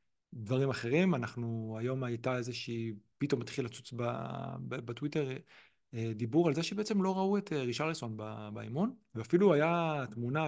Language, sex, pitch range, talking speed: Hebrew, male, 115-150 Hz, 135 wpm